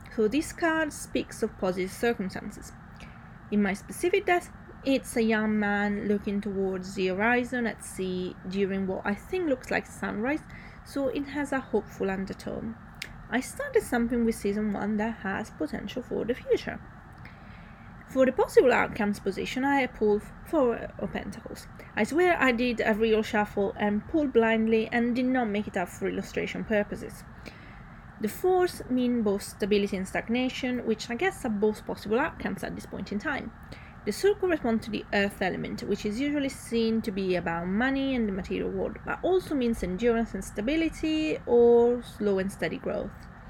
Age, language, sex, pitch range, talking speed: 20-39, English, female, 205-260 Hz, 170 wpm